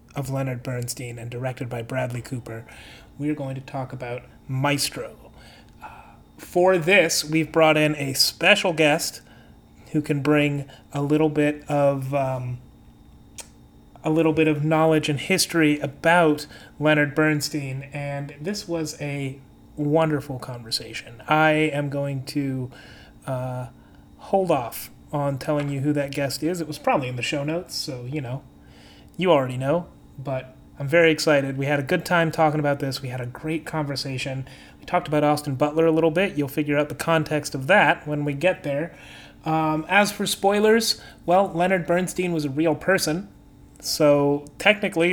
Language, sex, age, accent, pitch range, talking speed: English, male, 30-49, American, 135-160 Hz, 165 wpm